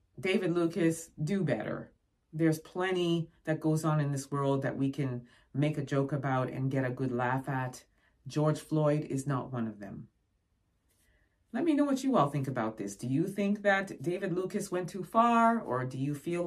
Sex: female